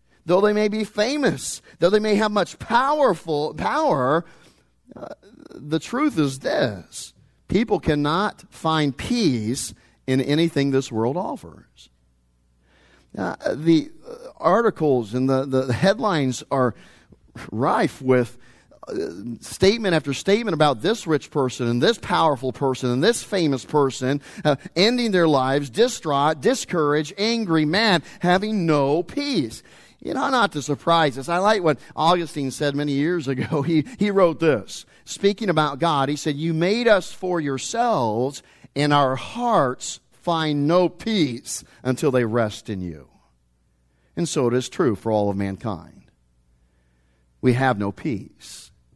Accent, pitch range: American, 125-180 Hz